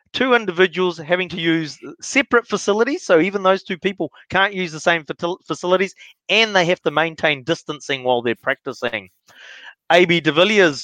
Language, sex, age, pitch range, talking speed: English, male, 30-49, 160-205 Hz, 155 wpm